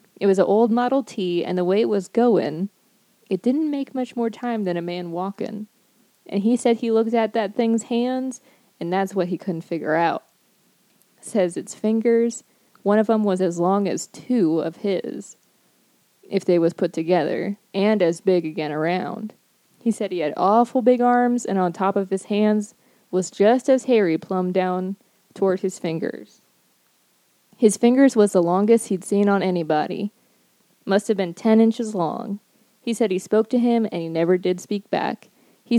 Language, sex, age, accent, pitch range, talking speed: English, female, 20-39, American, 185-230 Hz, 185 wpm